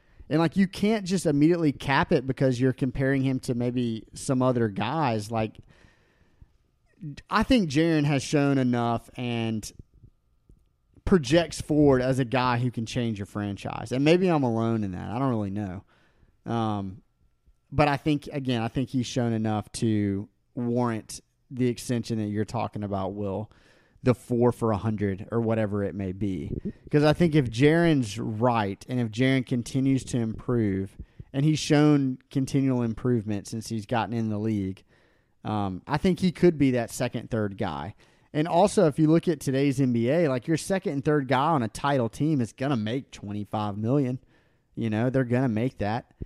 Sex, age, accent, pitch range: male, 30-49, American, 110-140 Hz